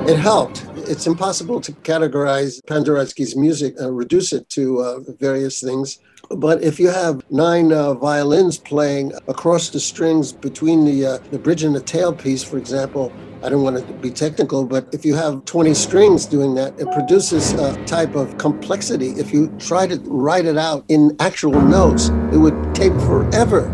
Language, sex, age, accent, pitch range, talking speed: English, male, 60-79, American, 135-170 Hz, 175 wpm